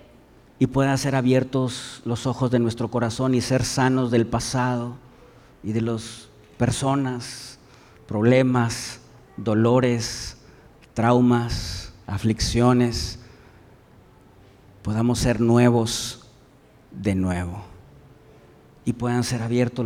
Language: Spanish